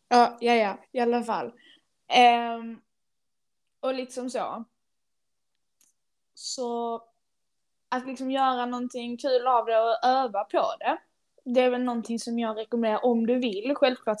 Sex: female